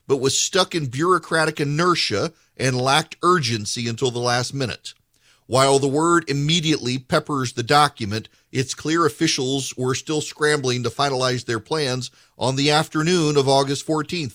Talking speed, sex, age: 150 wpm, male, 40-59